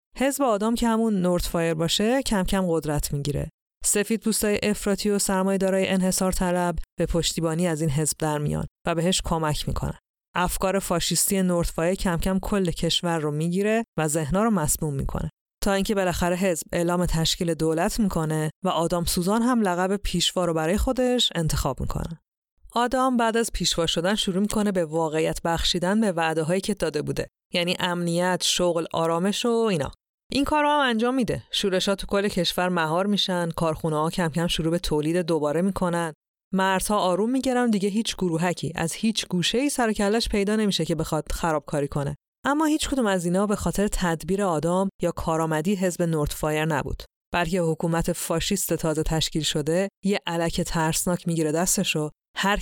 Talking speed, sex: 170 wpm, female